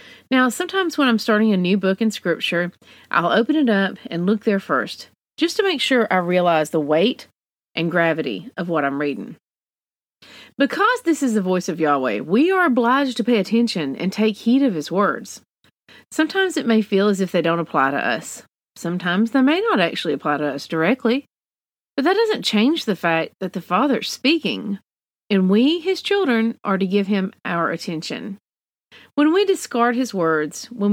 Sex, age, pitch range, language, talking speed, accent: female, 40-59, 175-260 Hz, English, 190 wpm, American